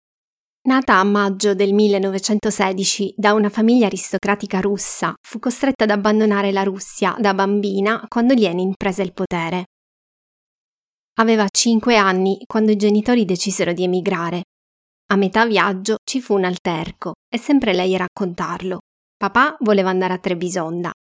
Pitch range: 190-225 Hz